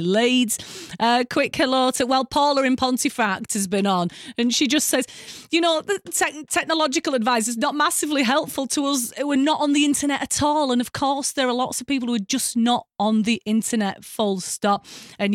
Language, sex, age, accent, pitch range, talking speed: English, female, 30-49, British, 190-270 Hz, 205 wpm